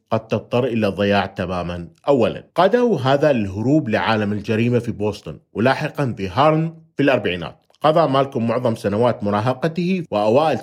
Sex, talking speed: male, 135 wpm